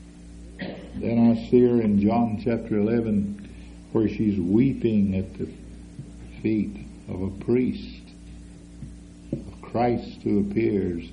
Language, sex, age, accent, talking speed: English, male, 60-79, American, 115 wpm